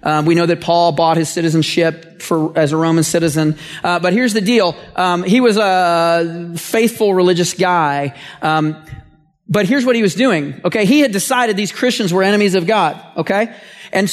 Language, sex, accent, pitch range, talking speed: English, male, American, 175-275 Hz, 185 wpm